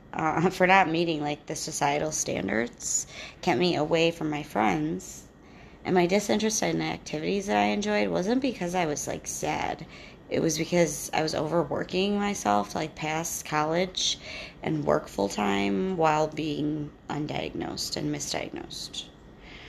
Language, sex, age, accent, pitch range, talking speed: English, female, 30-49, American, 145-165 Hz, 145 wpm